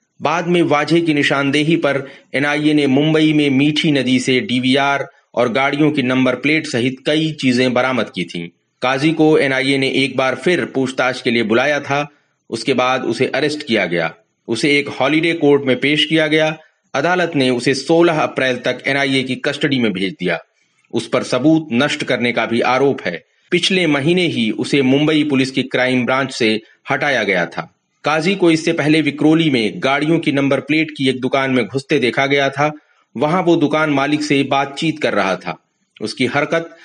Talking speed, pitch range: 185 wpm, 130-155 Hz